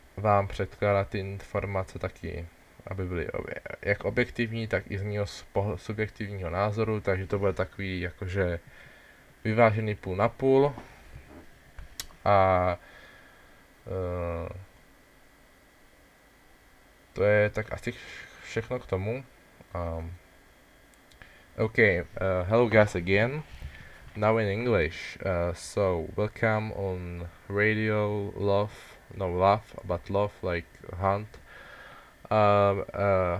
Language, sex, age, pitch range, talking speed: Czech, male, 20-39, 90-105 Hz, 105 wpm